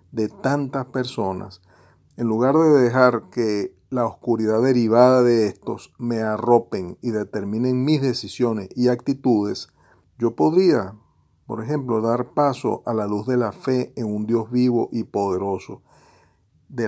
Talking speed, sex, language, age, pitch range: 140 wpm, male, Spanish, 40-59, 110-130 Hz